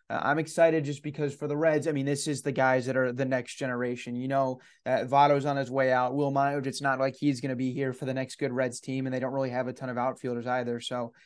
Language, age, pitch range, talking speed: English, 20-39, 130-150 Hz, 285 wpm